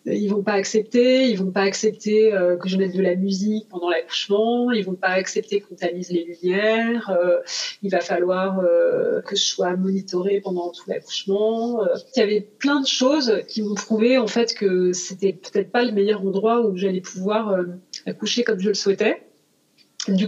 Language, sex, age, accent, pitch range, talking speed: French, female, 30-49, French, 185-235 Hz, 205 wpm